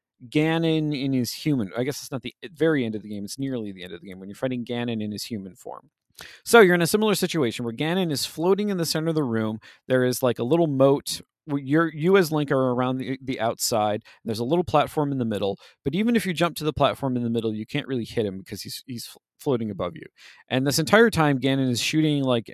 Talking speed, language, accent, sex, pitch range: 260 wpm, English, American, male, 115-160 Hz